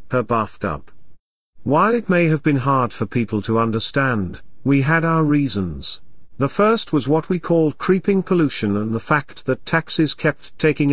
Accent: British